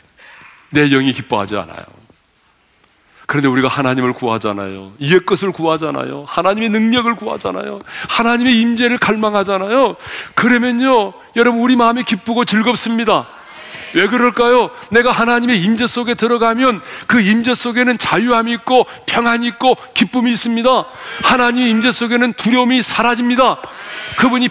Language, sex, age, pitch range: Korean, male, 40-59, 155-245 Hz